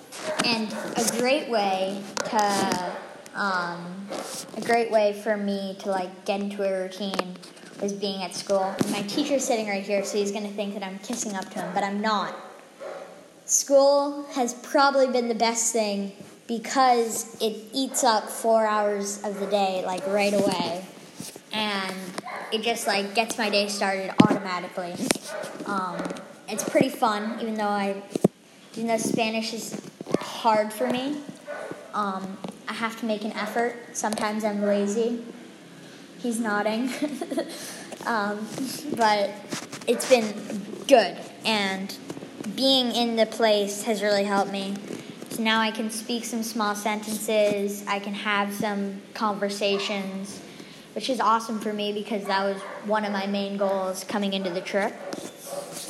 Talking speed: 145 wpm